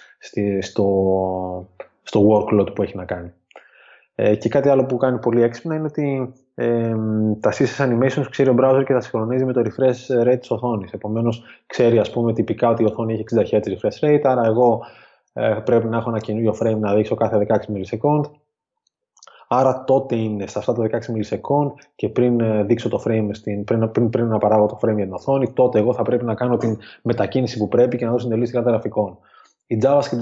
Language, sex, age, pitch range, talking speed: Greek, male, 20-39, 110-125 Hz, 200 wpm